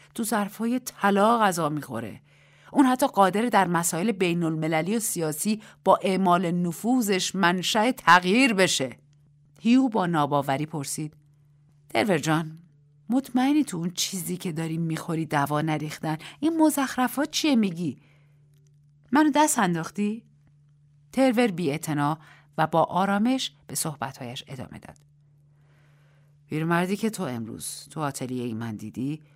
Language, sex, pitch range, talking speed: Persian, female, 145-180 Hz, 130 wpm